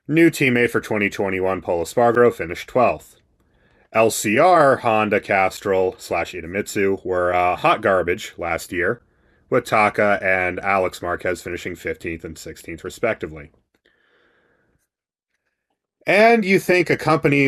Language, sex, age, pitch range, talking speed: English, male, 30-49, 95-125 Hz, 115 wpm